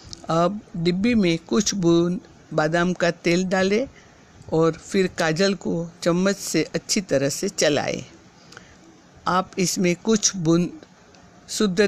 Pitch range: 160-190 Hz